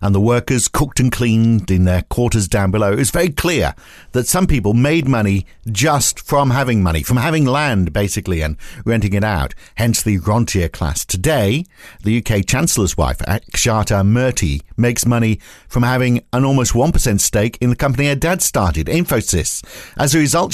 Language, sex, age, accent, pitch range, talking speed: English, male, 50-69, British, 100-130 Hz, 175 wpm